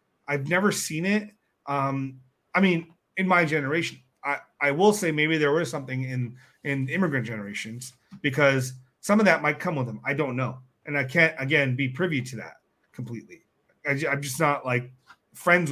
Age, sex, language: 30-49, male, English